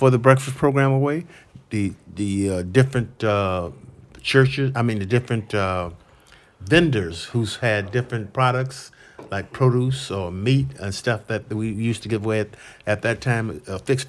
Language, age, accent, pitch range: English, 50-69, American, 105-130 Hz